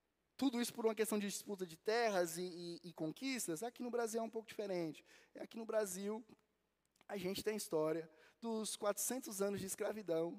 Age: 20-39